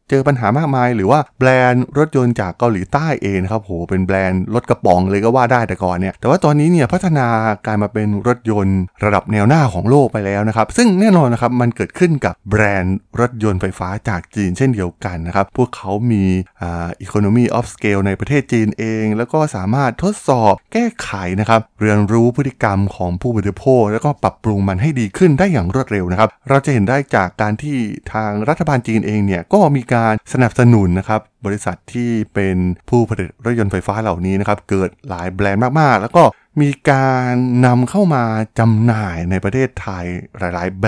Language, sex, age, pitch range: Thai, male, 20-39, 95-125 Hz